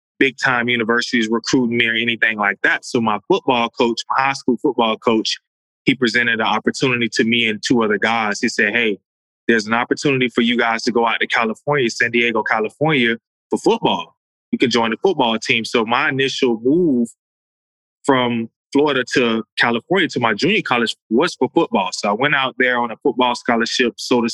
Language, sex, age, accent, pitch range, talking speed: English, male, 20-39, American, 115-130 Hz, 190 wpm